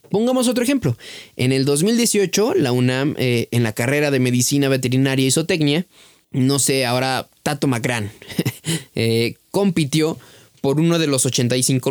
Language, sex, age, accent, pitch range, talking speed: Spanish, male, 20-39, Mexican, 125-165 Hz, 140 wpm